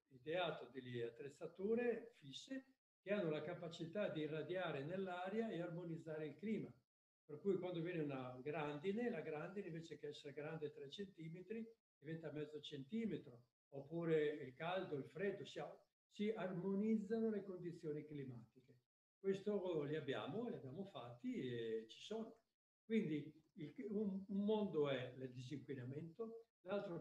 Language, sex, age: Italian, male, 60-79